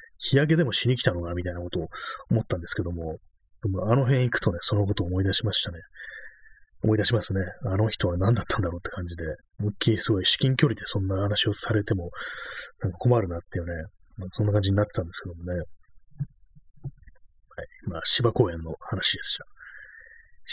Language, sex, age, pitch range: Japanese, male, 30-49, 95-130 Hz